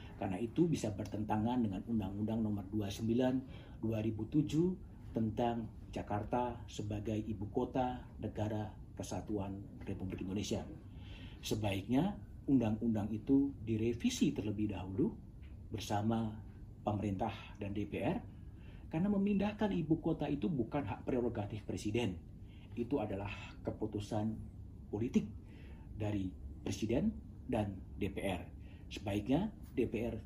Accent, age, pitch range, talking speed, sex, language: native, 40-59, 100-120 Hz, 95 wpm, male, Indonesian